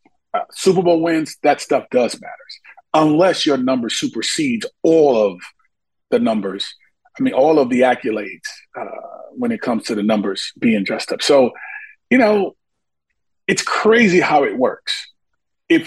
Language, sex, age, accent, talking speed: English, male, 40-59, American, 155 wpm